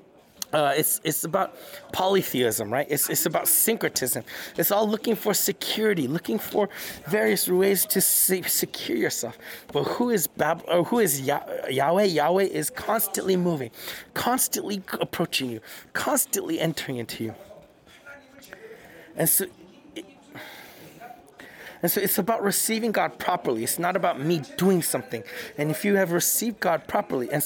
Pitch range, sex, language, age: 155-210 Hz, male, English, 30-49